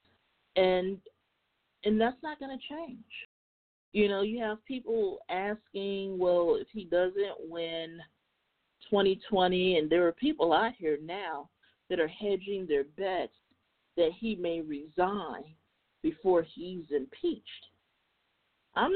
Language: English